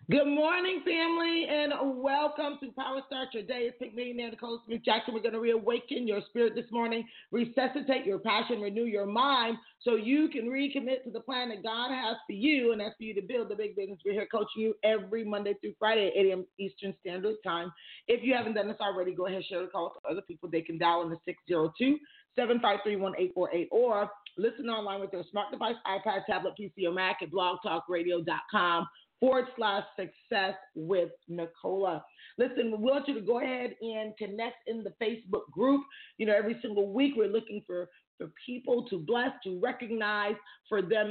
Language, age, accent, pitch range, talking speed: English, 40-59, American, 195-245 Hz, 195 wpm